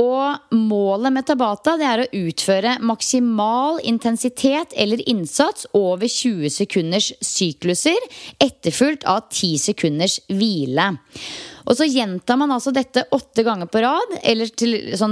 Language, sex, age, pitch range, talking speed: English, female, 30-49, 180-255 Hz, 130 wpm